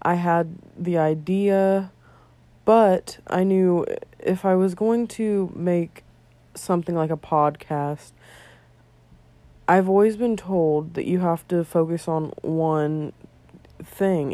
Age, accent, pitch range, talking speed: 20-39, American, 155-195 Hz, 120 wpm